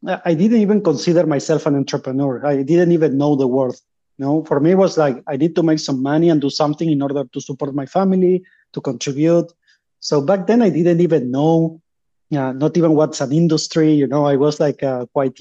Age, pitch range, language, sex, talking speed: 30-49, 140-165 Hz, English, male, 225 wpm